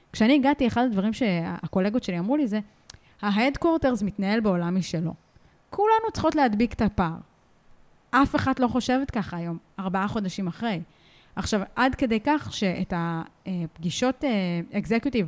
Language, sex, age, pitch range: Hebrew, female, 20-39, 185-245 Hz